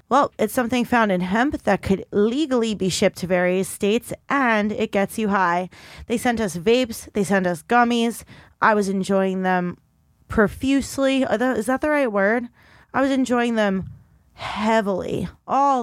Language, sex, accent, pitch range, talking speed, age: English, female, American, 200-275 Hz, 165 wpm, 20-39